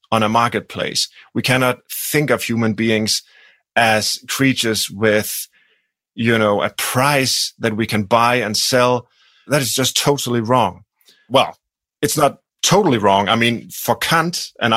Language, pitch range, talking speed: English, 110-130 Hz, 150 wpm